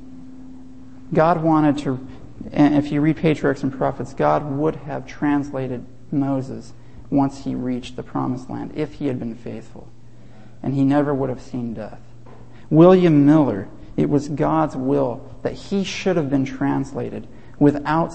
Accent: American